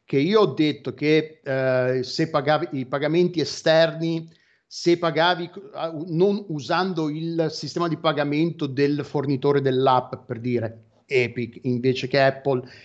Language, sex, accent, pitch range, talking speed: Italian, male, native, 135-170 Hz, 135 wpm